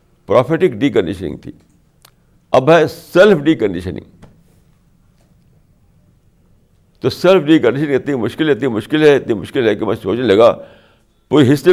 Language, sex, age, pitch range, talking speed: Urdu, male, 60-79, 95-150 Hz, 135 wpm